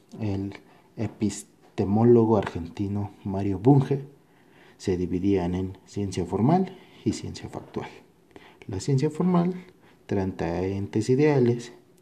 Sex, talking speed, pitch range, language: male, 95 wpm, 95-135 Hz, Spanish